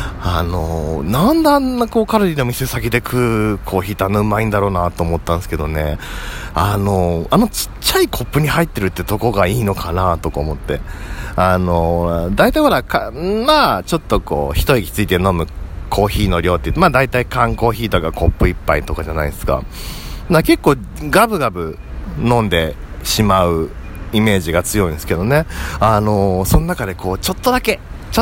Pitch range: 85-135 Hz